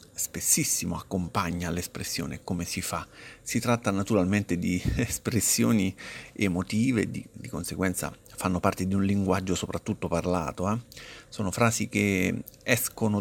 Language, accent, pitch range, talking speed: Italian, native, 90-125 Hz, 125 wpm